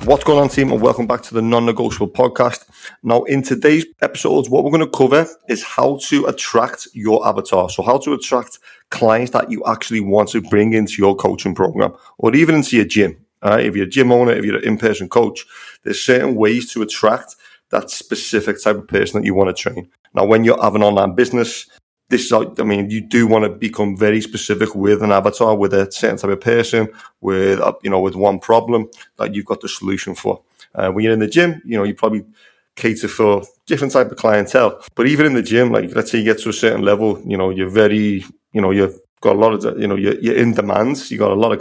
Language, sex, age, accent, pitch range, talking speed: English, male, 30-49, British, 105-130 Hz, 235 wpm